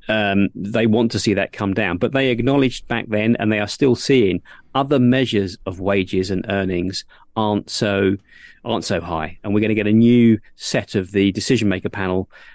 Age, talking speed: 40-59, 200 wpm